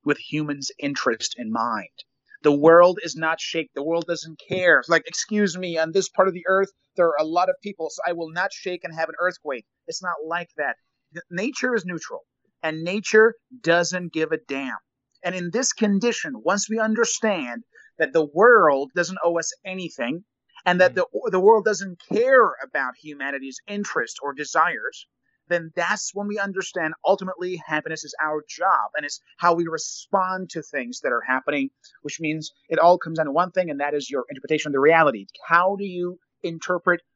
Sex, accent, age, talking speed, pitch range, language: male, American, 30-49, 190 wpm, 155-190 Hz, English